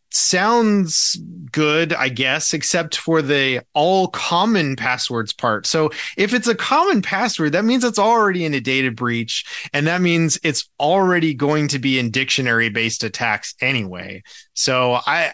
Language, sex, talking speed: English, male, 155 wpm